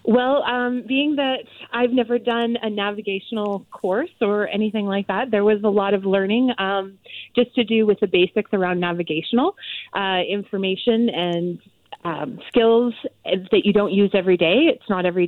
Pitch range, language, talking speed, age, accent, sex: 180-215 Hz, English, 170 wpm, 30-49, American, female